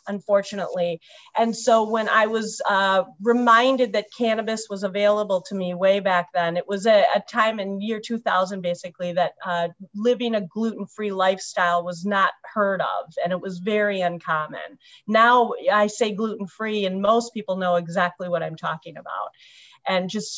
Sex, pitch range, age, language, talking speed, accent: female, 185-225 Hz, 40-59, English, 170 wpm, American